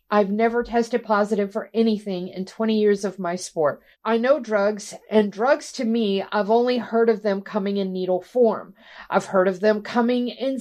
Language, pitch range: English, 210-250 Hz